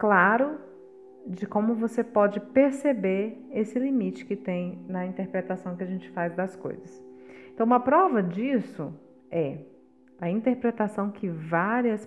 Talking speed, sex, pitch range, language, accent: 135 wpm, female, 190-255 Hz, Portuguese, Brazilian